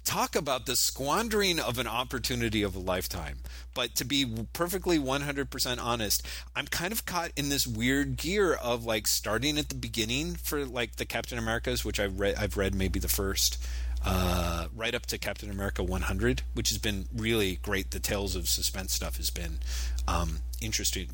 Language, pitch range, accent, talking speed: English, 90-125 Hz, American, 190 wpm